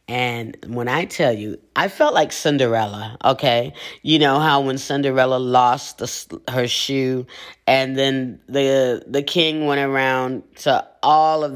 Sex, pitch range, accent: female, 125-160 Hz, American